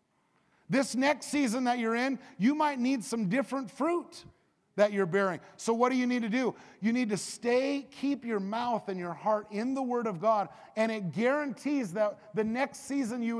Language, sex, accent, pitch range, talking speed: English, male, American, 195-255 Hz, 200 wpm